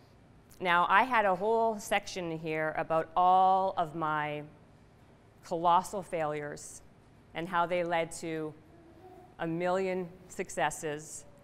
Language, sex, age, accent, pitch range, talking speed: English, female, 40-59, American, 155-185 Hz, 110 wpm